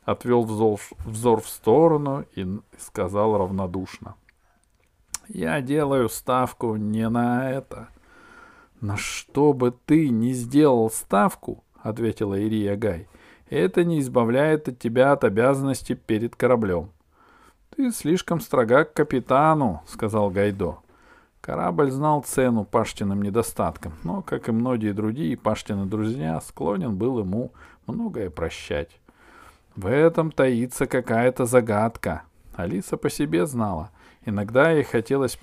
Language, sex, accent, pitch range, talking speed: Russian, male, native, 110-150 Hz, 115 wpm